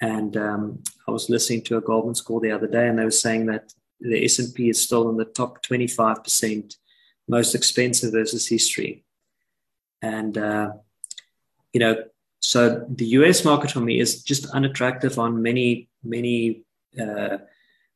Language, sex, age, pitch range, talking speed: English, male, 20-39, 110-125 Hz, 165 wpm